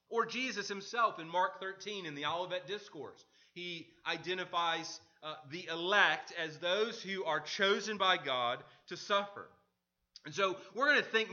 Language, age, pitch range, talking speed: English, 30-49, 130-175 Hz, 160 wpm